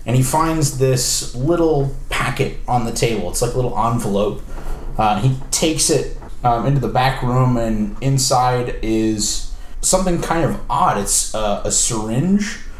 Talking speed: 160 wpm